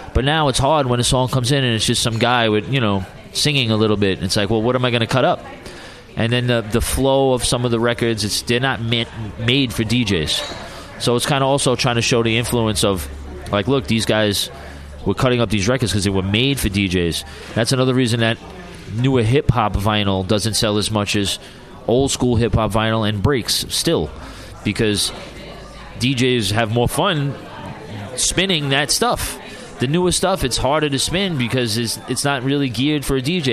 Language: English